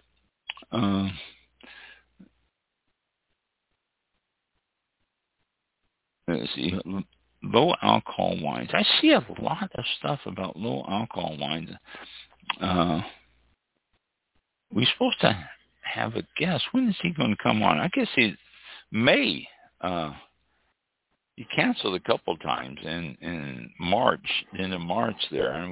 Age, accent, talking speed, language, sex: 60-79, American, 110 wpm, English, male